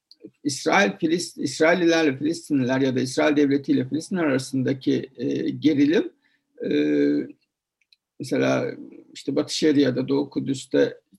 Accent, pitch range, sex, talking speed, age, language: native, 145-240 Hz, male, 115 wpm, 60-79, Turkish